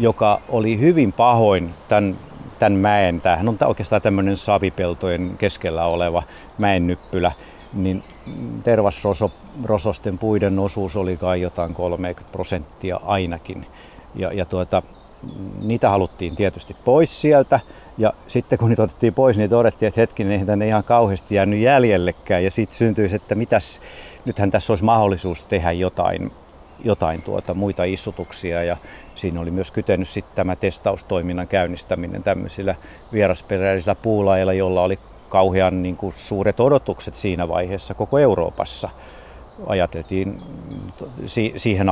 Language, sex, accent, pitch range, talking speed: Finnish, male, native, 90-110 Hz, 125 wpm